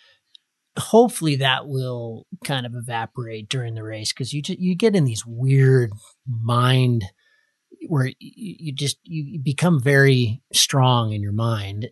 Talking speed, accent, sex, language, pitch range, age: 145 wpm, American, male, English, 115-145 Hz, 30-49